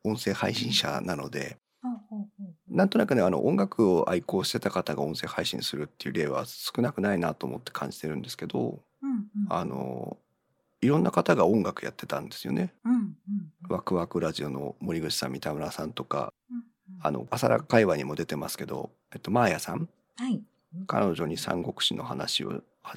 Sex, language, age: male, Japanese, 40-59